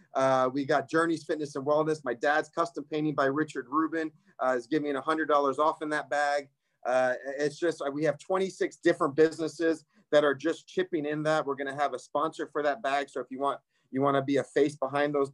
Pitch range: 140-160 Hz